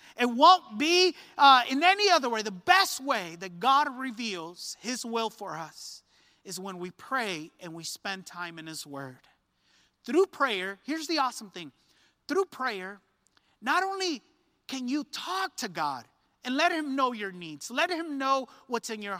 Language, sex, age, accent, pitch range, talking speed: English, male, 30-49, American, 190-275 Hz, 175 wpm